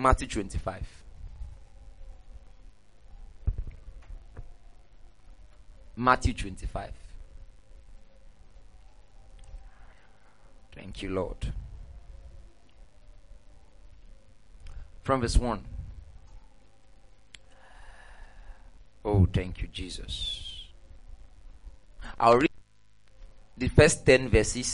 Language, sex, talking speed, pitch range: English, male, 50 wpm, 90-135 Hz